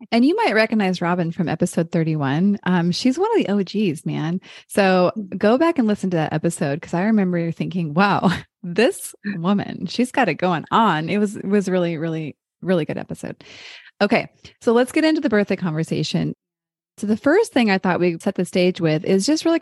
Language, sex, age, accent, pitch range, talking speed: English, female, 20-39, American, 165-215 Hz, 205 wpm